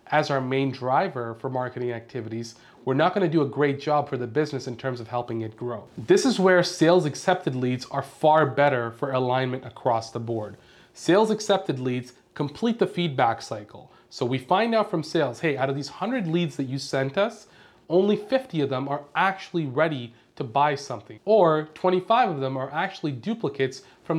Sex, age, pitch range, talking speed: male, 30-49, 130-175 Hz, 195 wpm